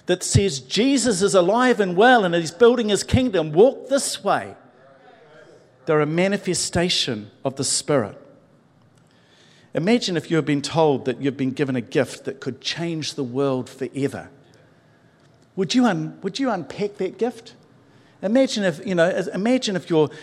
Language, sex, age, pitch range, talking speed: English, male, 50-69, 140-205 Hz, 160 wpm